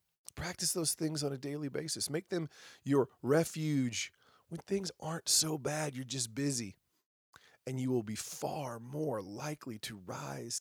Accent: American